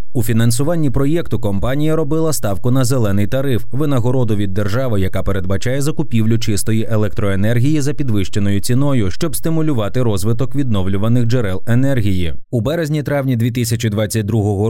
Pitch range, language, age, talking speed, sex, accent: 105-135 Hz, Ukrainian, 20-39, 125 wpm, male, native